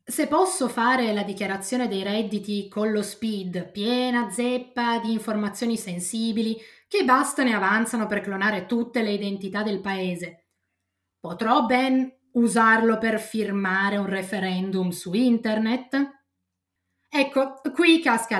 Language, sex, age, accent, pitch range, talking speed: Italian, female, 20-39, native, 200-260 Hz, 125 wpm